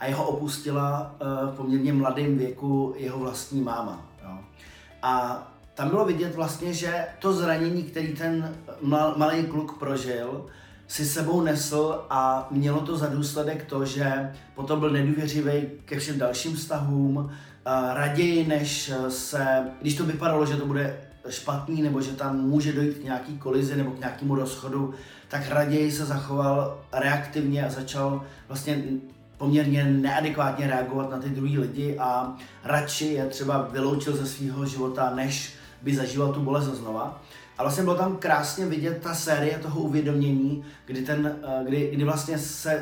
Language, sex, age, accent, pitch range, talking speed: Czech, male, 30-49, native, 130-150 Hz, 150 wpm